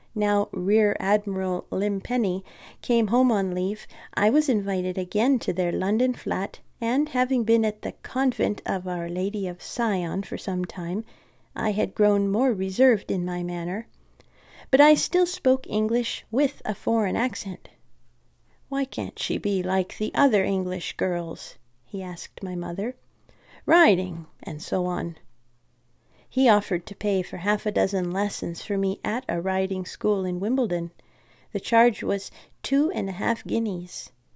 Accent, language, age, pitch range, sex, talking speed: American, English, 40-59, 180-230 Hz, female, 155 wpm